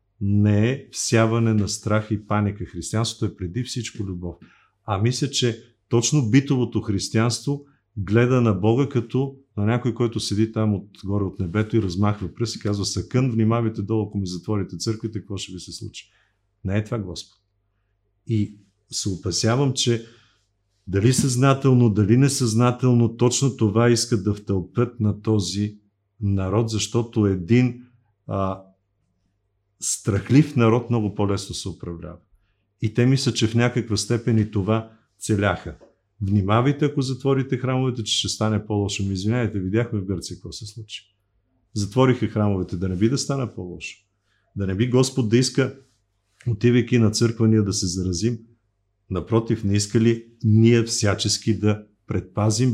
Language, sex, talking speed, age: Bulgarian, male, 145 wpm, 50-69